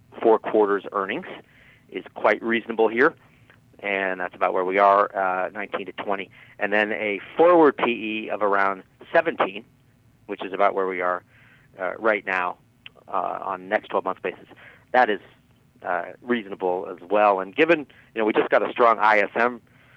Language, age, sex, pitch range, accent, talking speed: English, 40-59, male, 100-125 Hz, American, 170 wpm